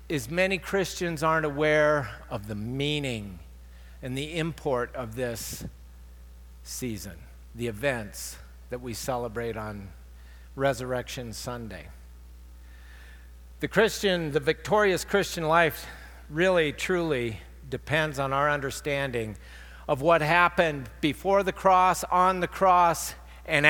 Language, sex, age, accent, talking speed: English, male, 50-69, American, 110 wpm